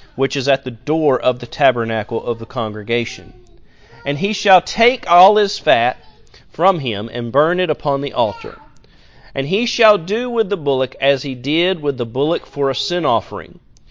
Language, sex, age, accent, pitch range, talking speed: English, male, 40-59, American, 125-170 Hz, 185 wpm